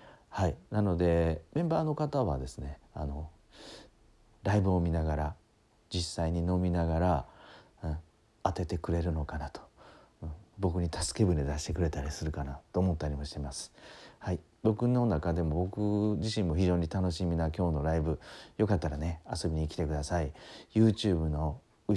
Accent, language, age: native, Japanese, 40-59